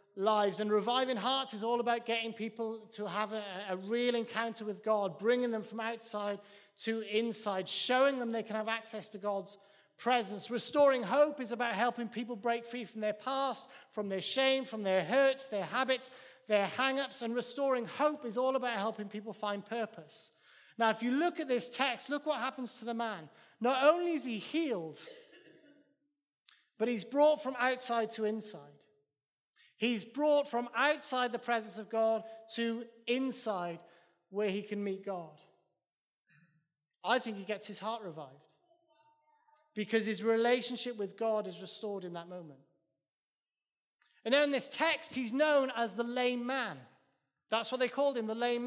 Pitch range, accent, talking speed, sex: 210-260 Hz, British, 170 wpm, male